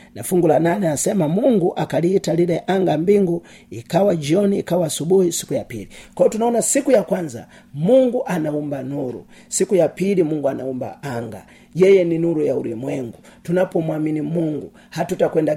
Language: Swahili